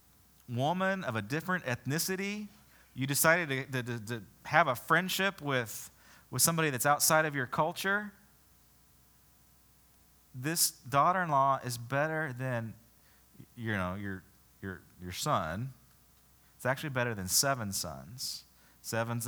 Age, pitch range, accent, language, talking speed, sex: 30-49, 95-145 Hz, American, English, 125 wpm, male